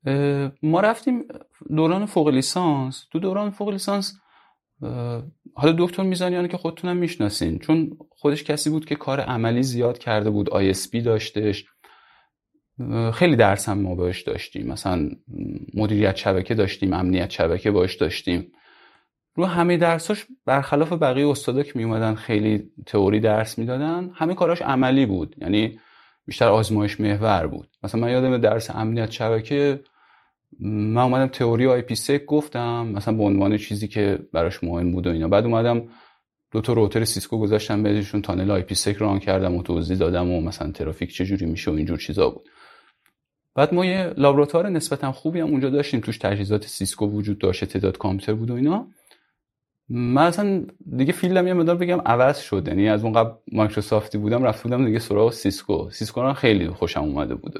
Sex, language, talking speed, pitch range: male, Persian, 155 wpm, 105-150 Hz